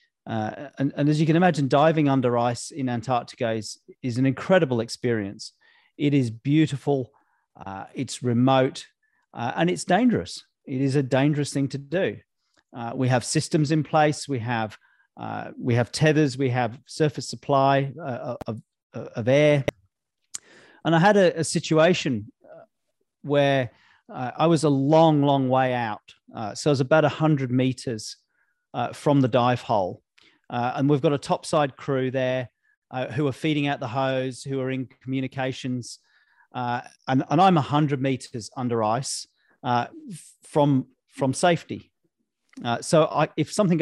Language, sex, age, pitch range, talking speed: English, male, 40-59, 125-155 Hz, 160 wpm